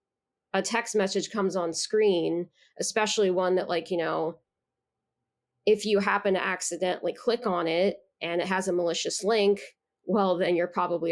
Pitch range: 180-210 Hz